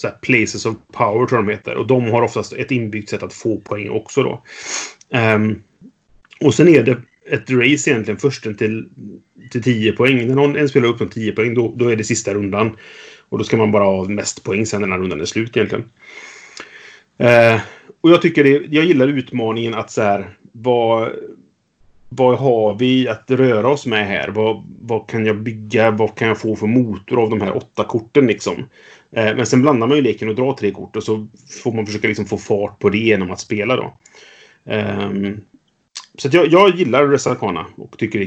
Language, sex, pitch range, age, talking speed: Swedish, male, 105-125 Hz, 30-49, 205 wpm